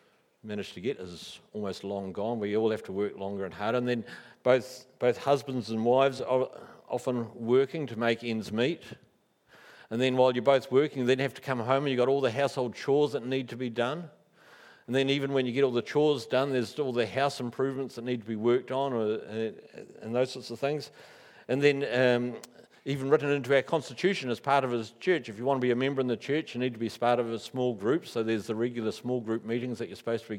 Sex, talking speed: male, 250 wpm